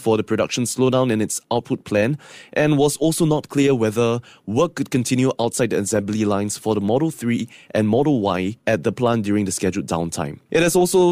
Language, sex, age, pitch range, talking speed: English, male, 20-39, 110-135 Hz, 205 wpm